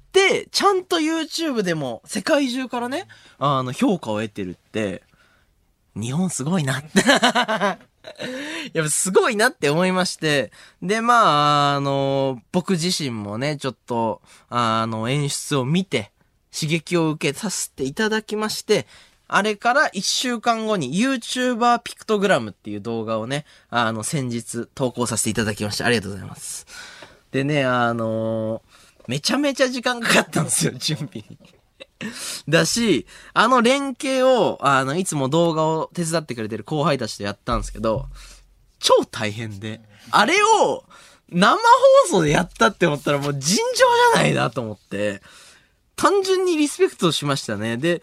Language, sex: Japanese, male